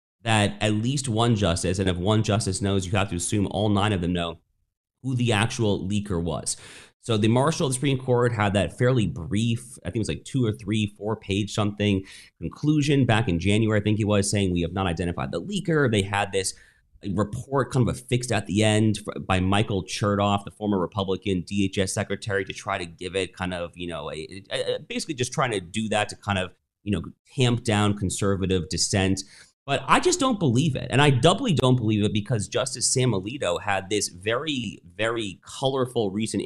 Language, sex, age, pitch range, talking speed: English, male, 30-49, 95-130 Hz, 205 wpm